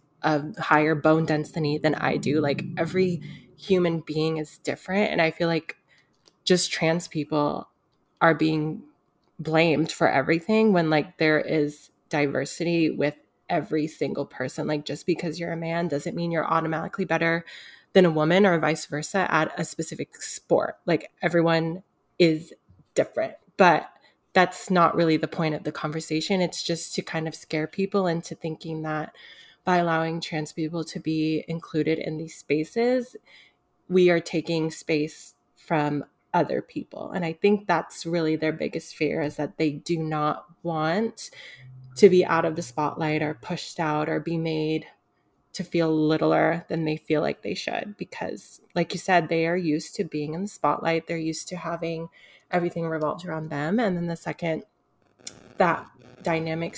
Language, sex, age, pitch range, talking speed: English, female, 20-39, 155-175 Hz, 165 wpm